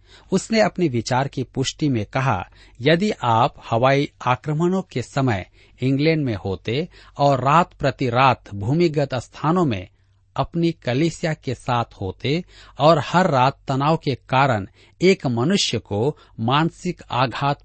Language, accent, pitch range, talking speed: Hindi, native, 105-155 Hz, 135 wpm